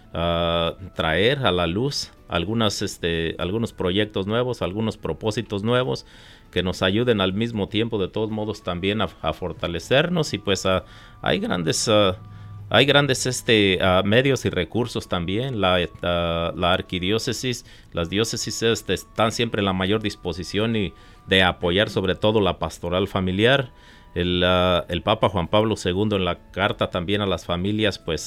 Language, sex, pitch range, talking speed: Spanish, male, 90-110 Hz, 160 wpm